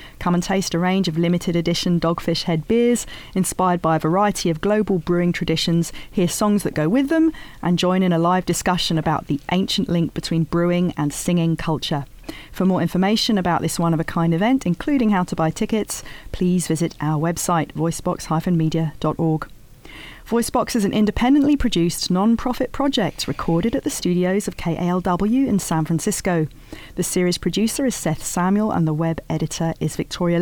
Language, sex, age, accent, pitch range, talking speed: English, female, 40-59, British, 160-210 Hz, 170 wpm